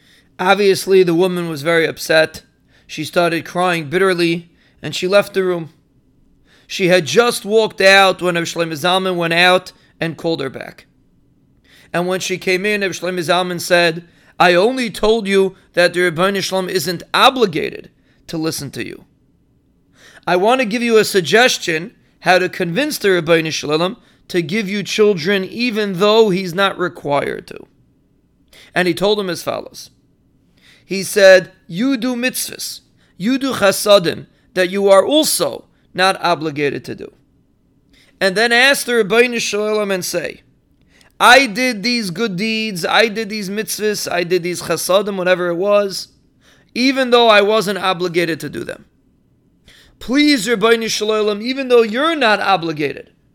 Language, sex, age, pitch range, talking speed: English, male, 30-49, 175-220 Hz, 155 wpm